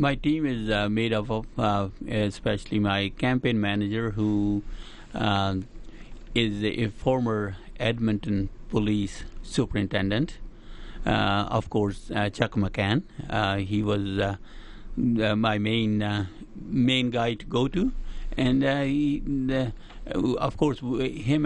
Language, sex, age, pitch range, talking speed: English, male, 60-79, 105-125 Hz, 130 wpm